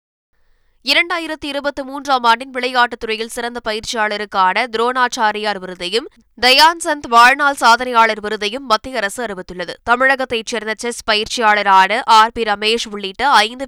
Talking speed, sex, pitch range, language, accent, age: 105 wpm, female, 210-250 Hz, Tamil, native, 20-39